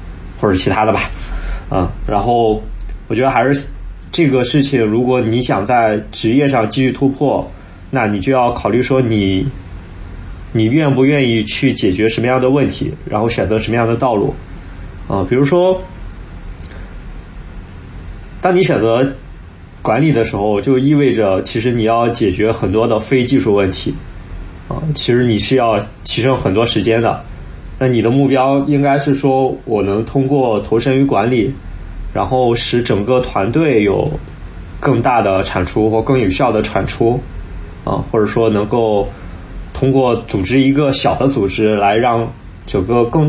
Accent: native